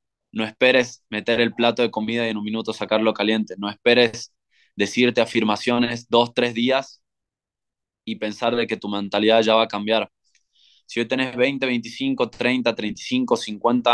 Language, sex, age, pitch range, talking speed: Spanish, male, 20-39, 110-120 Hz, 165 wpm